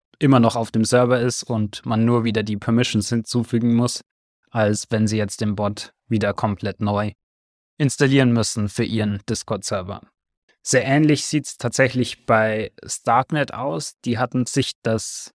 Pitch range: 115-130 Hz